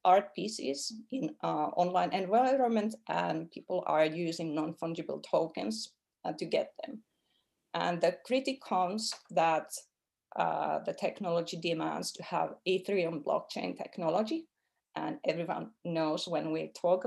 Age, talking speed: 30-49, 125 wpm